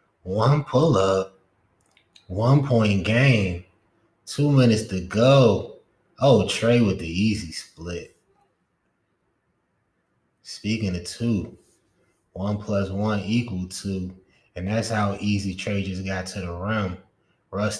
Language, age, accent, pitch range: English, 20-39, American, 95-140 Hz